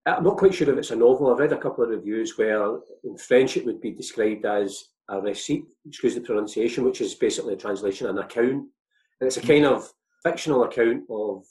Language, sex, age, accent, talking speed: English, male, 40-59, British, 220 wpm